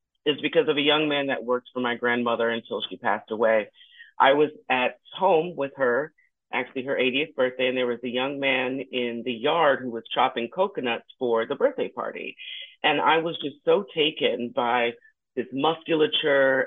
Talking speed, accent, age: 185 wpm, American, 40-59